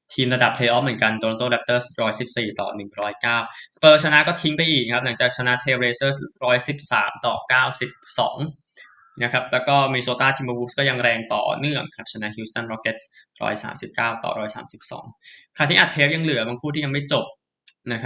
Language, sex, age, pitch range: Thai, male, 10-29, 115-140 Hz